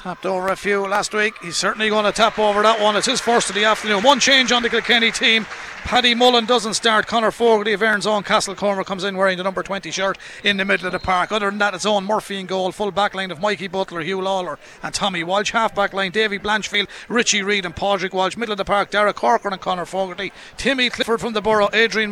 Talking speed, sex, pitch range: 255 wpm, male, 195-225 Hz